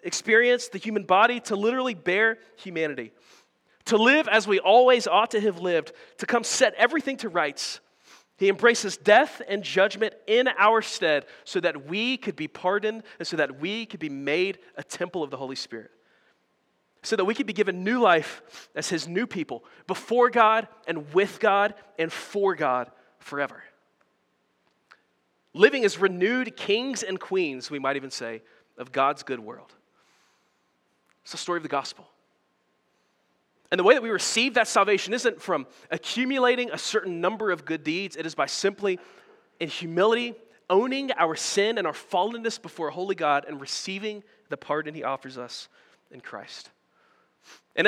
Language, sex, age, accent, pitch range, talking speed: English, male, 40-59, American, 165-230 Hz, 170 wpm